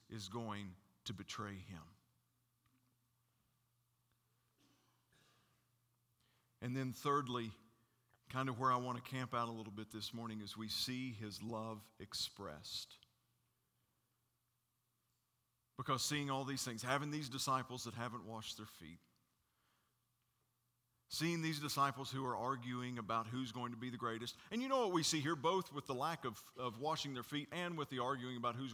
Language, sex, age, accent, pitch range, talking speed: English, male, 50-69, American, 120-145 Hz, 155 wpm